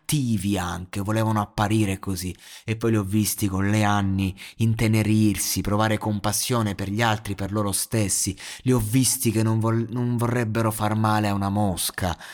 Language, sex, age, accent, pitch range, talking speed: Italian, male, 30-49, native, 100-115 Hz, 165 wpm